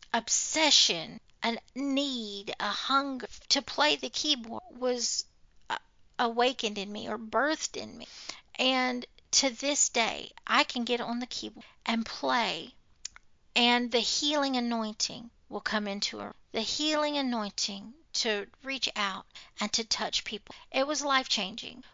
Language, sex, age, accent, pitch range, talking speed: English, female, 50-69, American, 220-275 Hz, 135 wpm